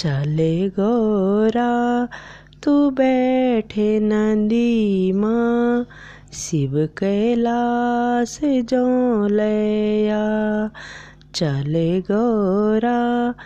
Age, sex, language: 20-39, female, Hindi